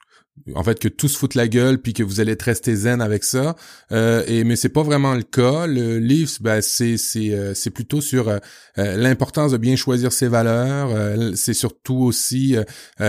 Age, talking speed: 30-49, 195 wpm